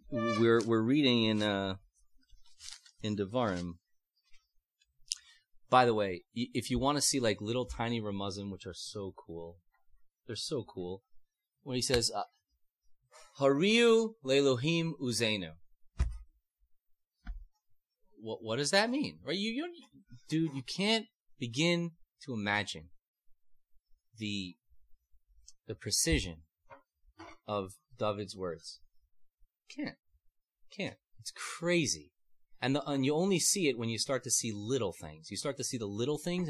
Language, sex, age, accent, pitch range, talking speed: English, male, 30-49, American, 90-135 Hz, 130 wpm